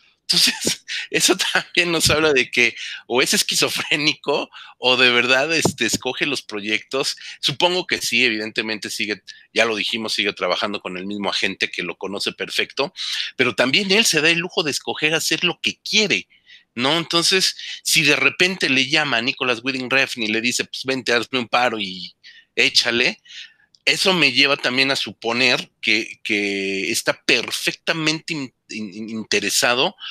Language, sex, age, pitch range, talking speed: Spanish, male, 40-59, 115-170 Hz, 155 wpm